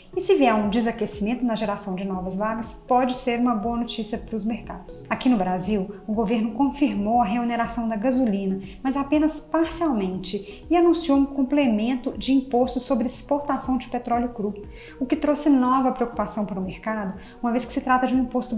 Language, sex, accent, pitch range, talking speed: Portuguese, female, Brazilian, 220-265 Hz, 185 wpm